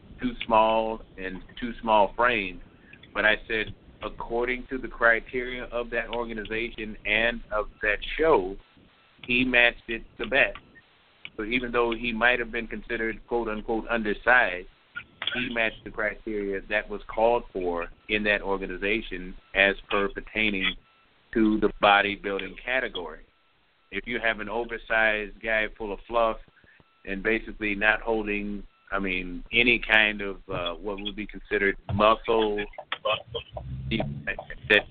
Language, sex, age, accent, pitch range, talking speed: English, male, 50-69, American, 100-115 Hz, 135 wpm